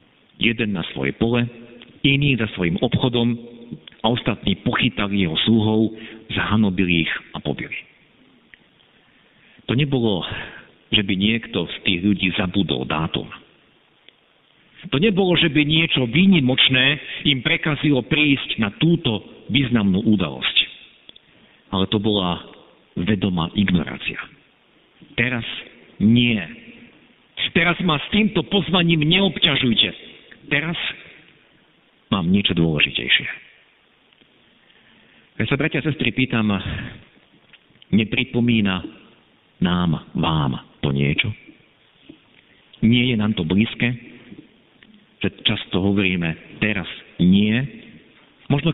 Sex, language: male, Slovak